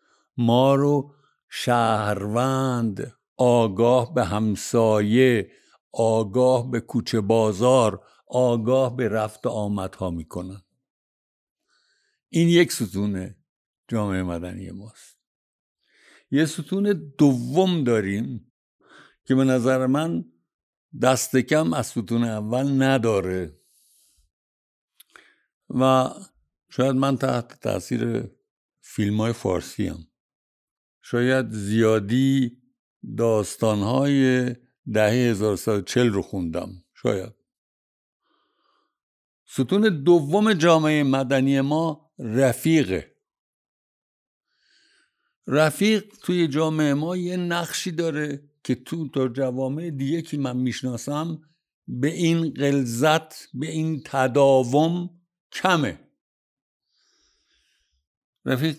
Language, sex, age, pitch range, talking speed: Persian, male, 60-79, 110-155 Hz, 85 wpm